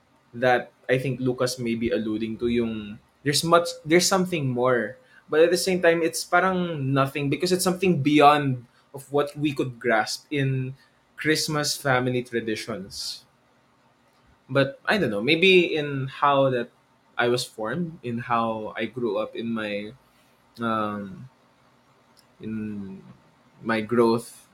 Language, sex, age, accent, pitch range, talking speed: English, male, 20-39, Filipino, 120-145 Hz, 140 wpm